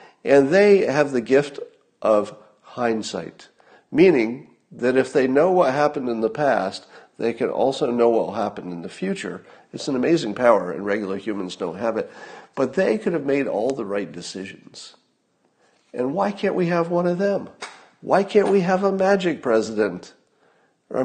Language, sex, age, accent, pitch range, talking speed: English, male, 50-69, American, 105-155 Hz, 175 wpm